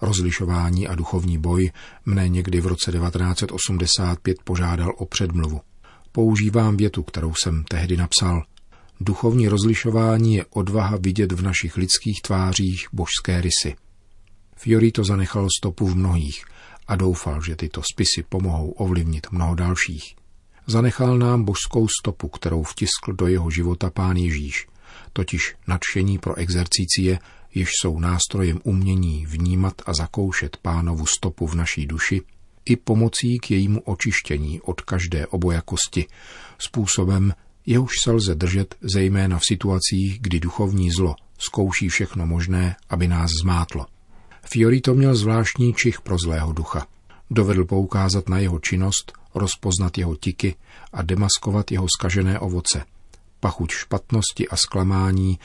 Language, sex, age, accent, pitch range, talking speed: Czech, male, 40-59, native, 85-100 Hz, 130 wpm